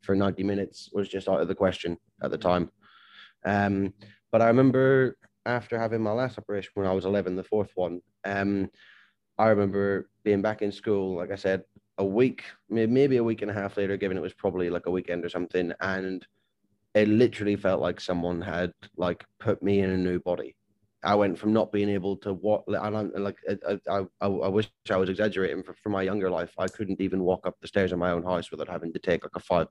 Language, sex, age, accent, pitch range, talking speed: English, male, 10-29, British, 95-105 Hz, 225 wpm